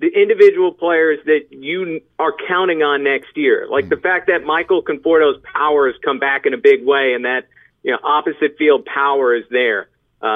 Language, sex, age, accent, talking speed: English, male, 40-59, American, 195 wpm